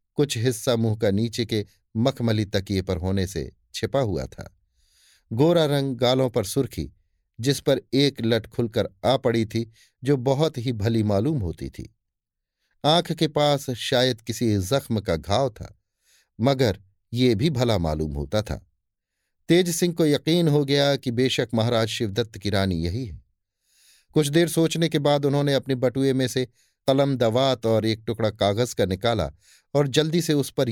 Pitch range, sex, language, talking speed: 100-140 Hz, male, Hindi, 170 wpm